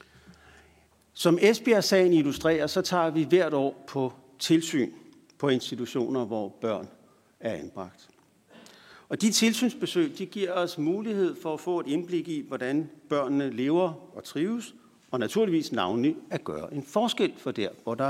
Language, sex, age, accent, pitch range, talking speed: Danish, male, 60-79, native, 130-185 Hz, 150 wpm